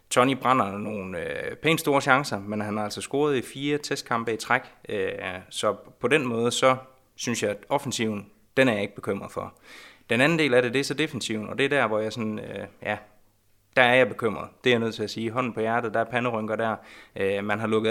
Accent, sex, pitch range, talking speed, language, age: native, male, 105-125 Hz, 245 wpm, Danish, 20-39